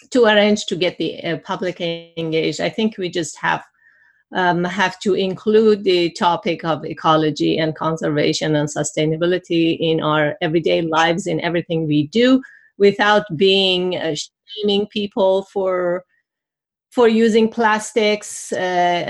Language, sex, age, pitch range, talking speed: English, female, 30-49, 170-205 Hz, 135 wpm